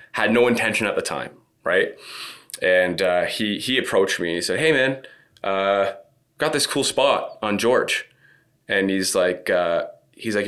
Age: 20-39